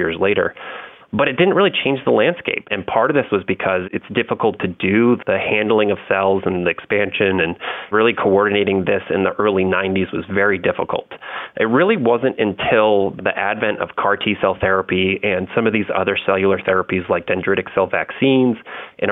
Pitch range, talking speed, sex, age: 95-110 Hz, 190 wpm, male, 30-49